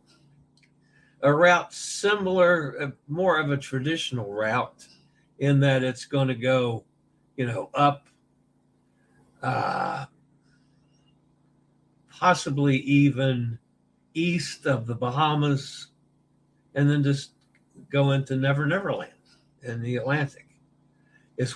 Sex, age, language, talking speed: male, 60-79, English, 95 wpm